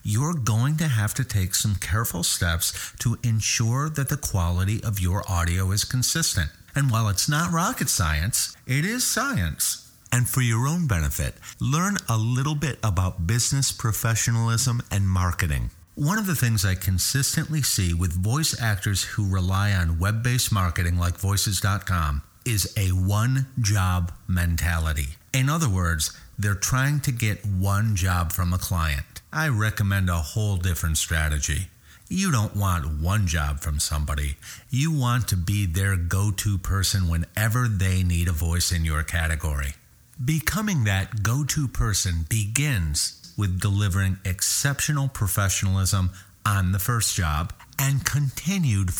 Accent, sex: American, male